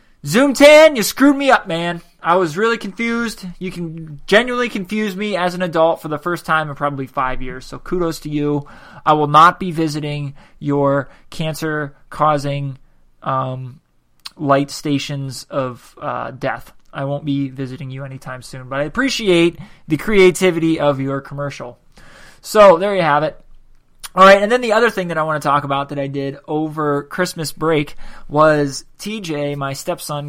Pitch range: 145-180 Hz